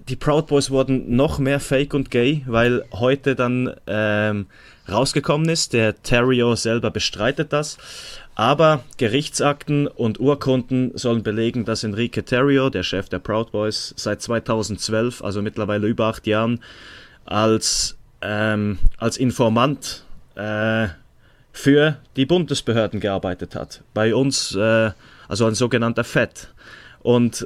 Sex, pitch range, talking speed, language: male, 110-130 Hz, 130 wpm, German